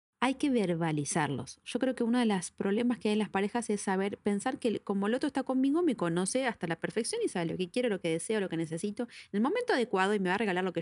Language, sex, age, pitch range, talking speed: Spanish, female, 30-49, 170-250 Hz, 285 wpm